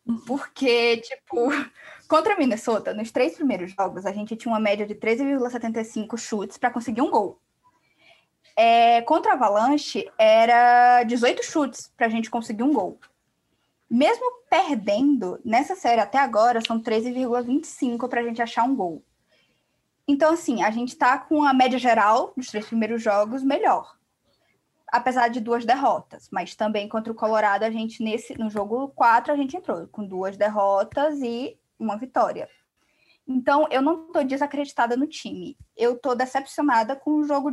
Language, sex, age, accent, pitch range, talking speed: Portuguese, female, 10-29, Brazilian, 220-285 Hz, 150 wpm